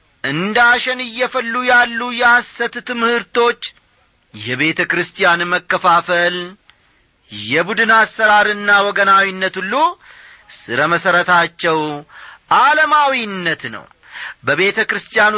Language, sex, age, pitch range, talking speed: Amharic, male, 40-59, 155-240 Hz, 65 wpm